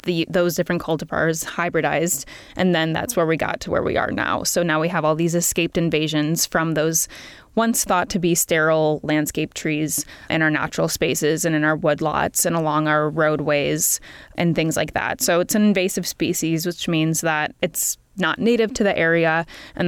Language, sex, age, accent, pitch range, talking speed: English, female, 20-39, American, 155-180 Hz, 190 wpm